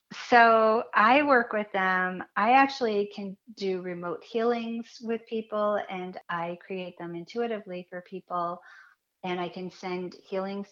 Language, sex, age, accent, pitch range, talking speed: English, female, 40-59, American, 160-195 Hz, 140 wpm